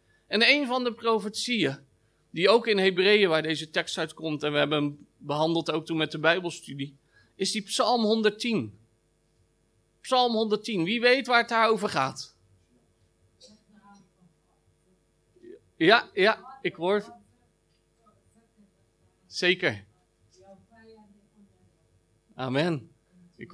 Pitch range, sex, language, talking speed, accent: 155-230 Hz, male, Dutch, 110 wpm, Dutch